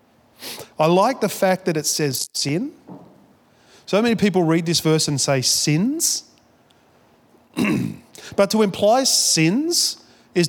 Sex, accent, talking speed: male, Australian, 125 wpm